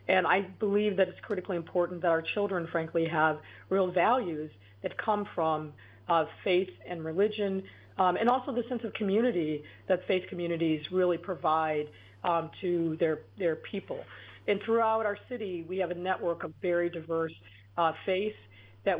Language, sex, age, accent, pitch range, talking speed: English, female, 40-59, American, 160-190 Hz, 165 wpm